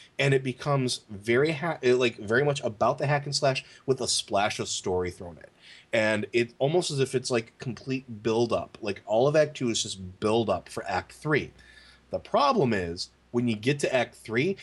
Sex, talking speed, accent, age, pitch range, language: male, 210 wpm, American, 30-49, 105-135 Hz, English